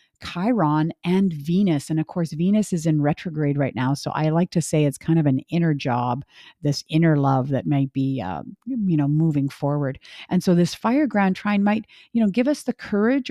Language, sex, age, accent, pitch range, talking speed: English, female, 50-69, American, 150-195 Hz, 210 wpm